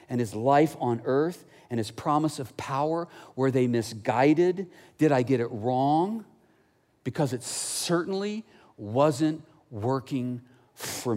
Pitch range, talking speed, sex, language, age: 105-145 Hz, 130 wpm, male, English, 50-69